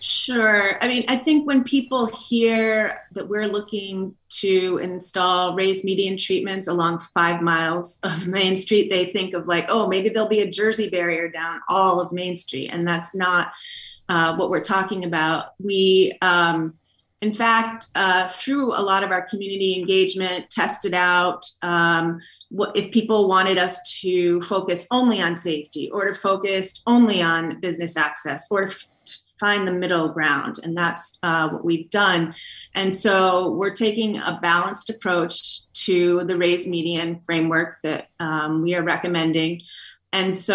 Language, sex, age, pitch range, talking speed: English, female, 30-49, 170-210 Hz, 160 wpm